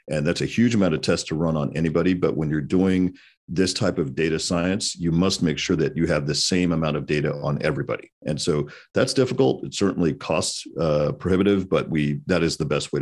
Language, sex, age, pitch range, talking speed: English, male, 50-69, 75-95 Hz, 230 wpm